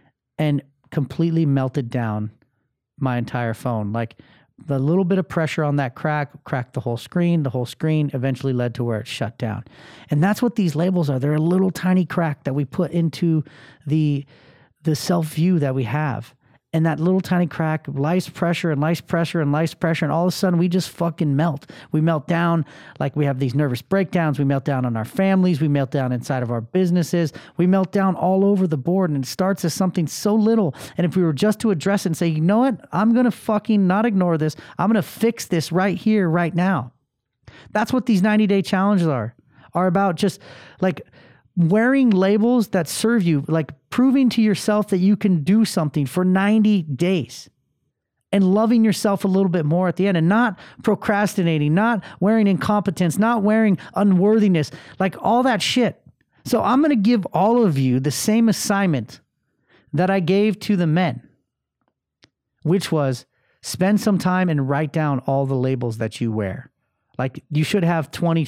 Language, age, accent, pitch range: English, 30-49, American, 140-195 Hz